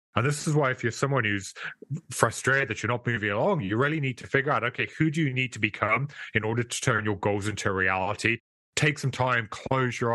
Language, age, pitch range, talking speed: English, 30-49, 105-130 Hz, 235 wpm